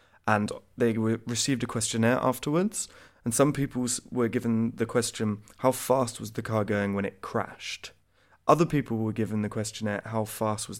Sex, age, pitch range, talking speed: male, 20-39, 100-120 Hz, 170 wpm